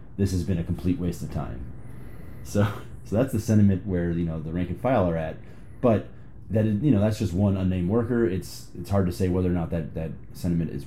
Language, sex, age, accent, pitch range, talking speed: English, male, 30-49, American, 85-105 Hz, 235 wpm